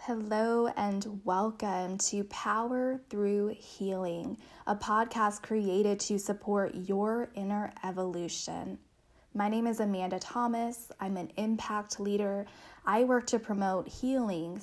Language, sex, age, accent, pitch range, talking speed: English, female, 10-29, American, 195-230 Hz, 120 wpm